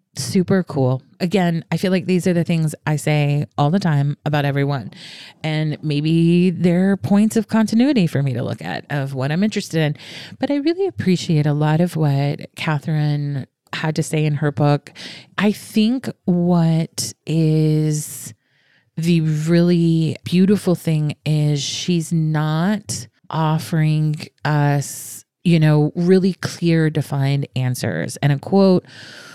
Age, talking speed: 30-49, 145 wpm